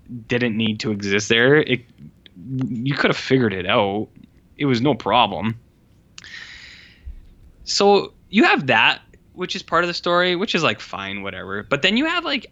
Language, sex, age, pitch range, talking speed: English, male, 10-29, 110-160 Hz, 175 wpm